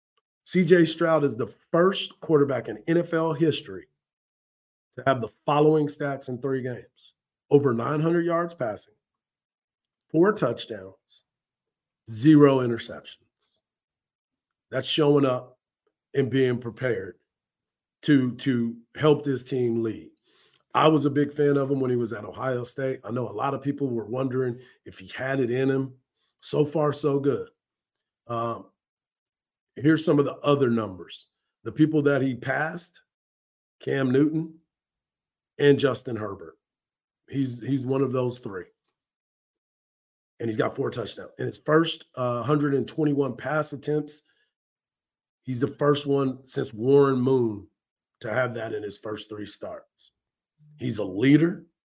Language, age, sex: English, 40-59, male